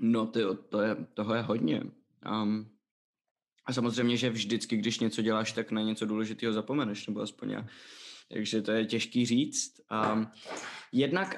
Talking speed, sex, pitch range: 130 wpm, male, 110-125 Hz